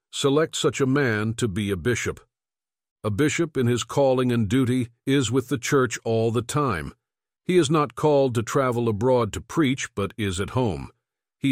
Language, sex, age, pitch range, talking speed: English, male, 60-79, 110-135 Hz, 190 wpm